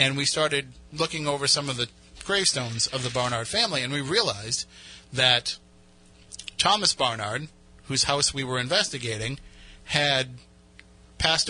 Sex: male